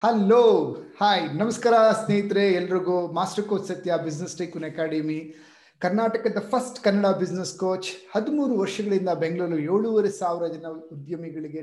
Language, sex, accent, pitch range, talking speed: Kannada, male, native, 160-215 Hz, 120 wpm